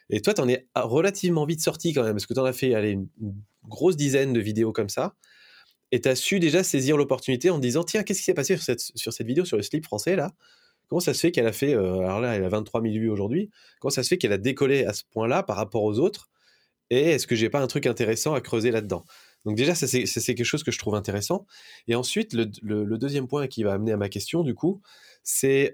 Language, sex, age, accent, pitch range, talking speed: French, male, 20-39, French, 110-140 Hz, 270 wpm